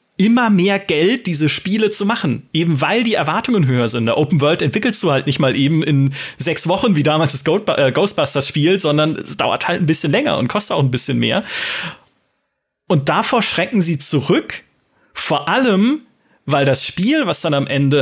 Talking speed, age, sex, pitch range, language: 190 wpm, 30-49, male, 140-195 Hz, German